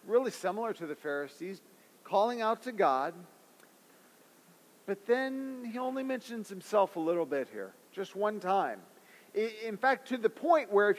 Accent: American